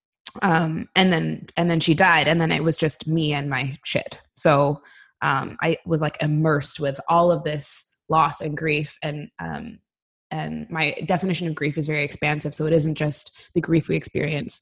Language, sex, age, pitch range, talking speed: English, female, 20-39, 150-175 Hz, 195 wpm